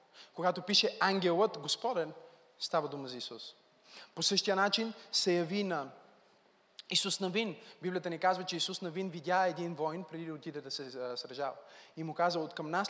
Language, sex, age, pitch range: Bulgarian, male, 20-39, 160-195 Hz